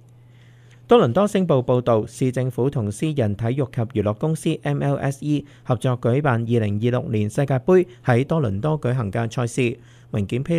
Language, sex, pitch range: Chinese, male, 115-140 Hz